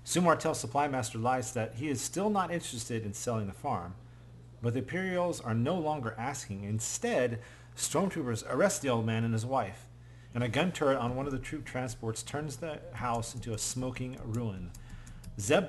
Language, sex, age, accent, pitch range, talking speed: English, male, 40-59, American, 115-140 Hz, 185 wpm